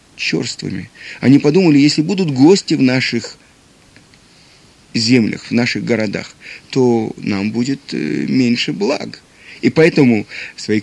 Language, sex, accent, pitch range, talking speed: Russian, male, native, 115-155 Hz, 115 wpm